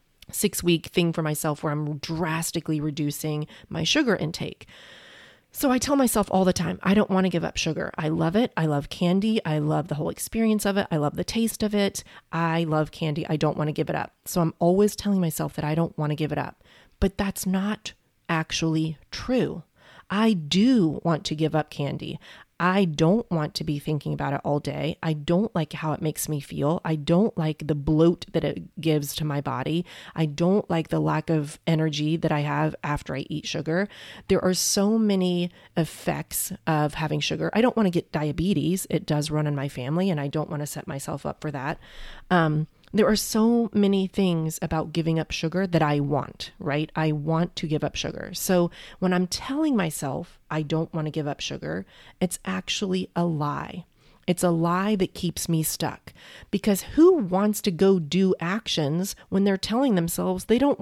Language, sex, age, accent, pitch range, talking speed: English, female, 30-49, American, 155-200 Hz, 205 wpm